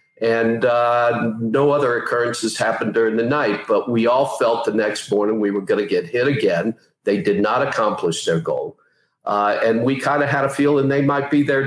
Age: 50-69